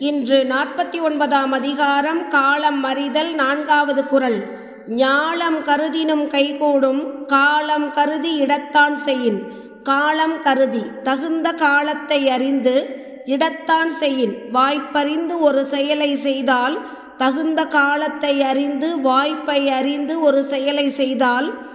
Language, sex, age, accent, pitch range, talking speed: Tamil, female, 20-39, native, 270-305 Hz, 95 wpm